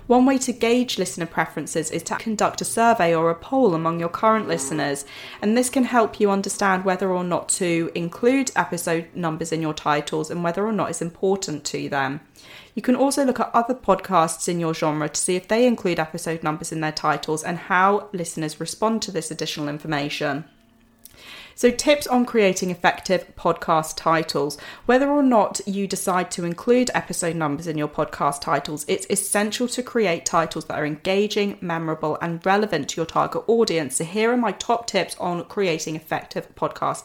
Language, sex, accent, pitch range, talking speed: English, female, British, 160-215 Hz, 185 wpm